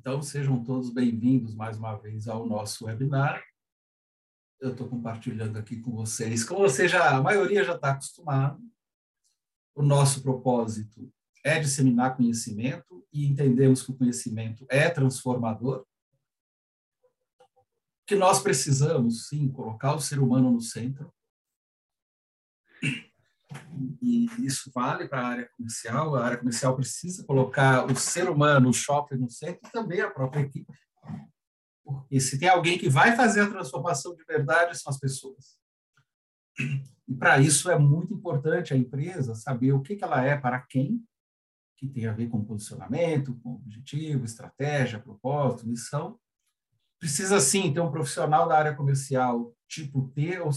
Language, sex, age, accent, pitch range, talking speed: Portuguese, male, 60-79, Brazilian, 125-155 Hz, 145 wpm